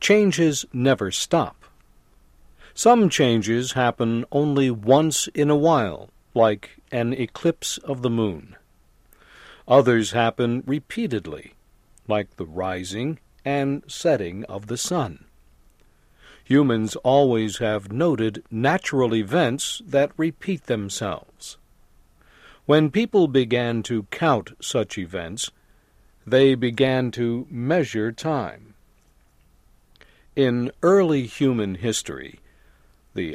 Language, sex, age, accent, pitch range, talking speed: English, male, 60-79, American, 110-145 Hz, 95 wpm